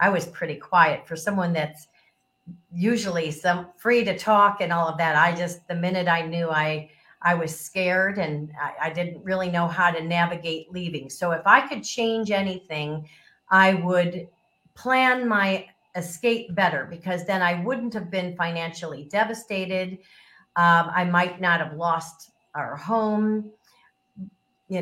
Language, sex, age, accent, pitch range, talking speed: English, female, 50-69, American, 170-215 Hz, 155 wpm